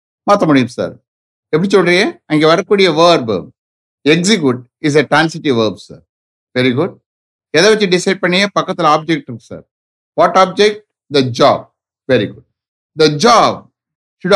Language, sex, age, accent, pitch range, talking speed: English, male, 60-79, Indian, 130-185 Hz, 90 wpm